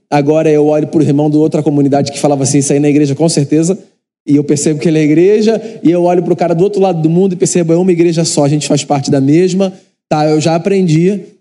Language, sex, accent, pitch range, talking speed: Portuguese, male, Brazilian, 140-165 Hz, 280 wpm